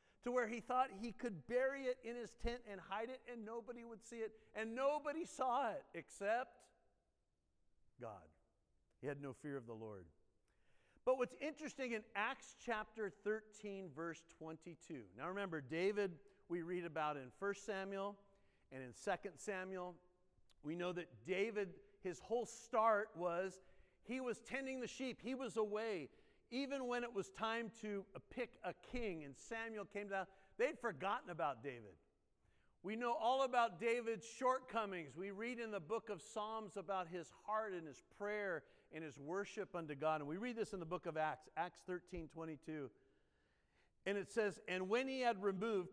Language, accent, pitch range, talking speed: English, American, 180-230 Hz, 170 wpm